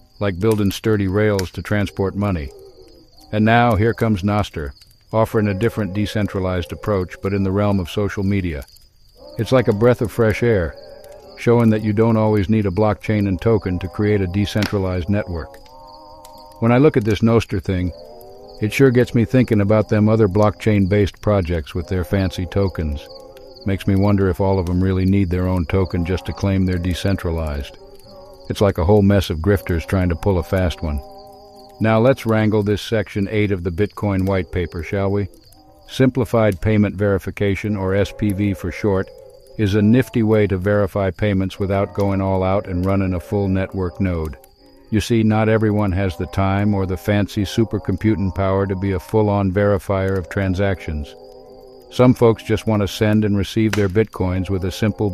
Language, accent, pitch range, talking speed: English, American, 95-110 Hz, 180 wpm